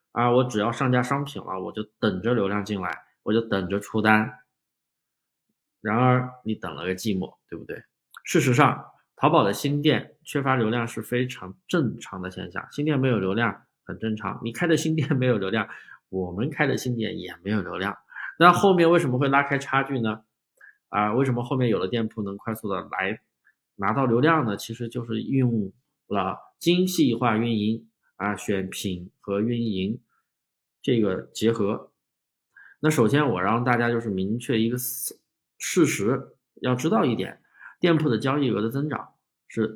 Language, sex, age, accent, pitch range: Chinese, male, 20-39, native, 105-140 Hz